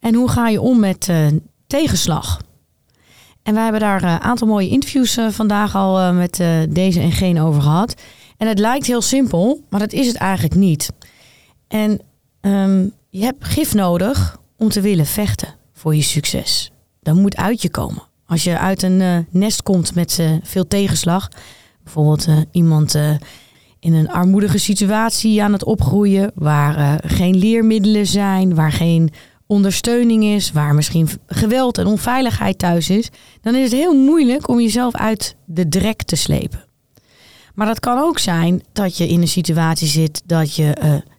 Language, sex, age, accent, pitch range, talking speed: Dutch, female, 30-49, Dutch, 165-230 Hz, 175 wpm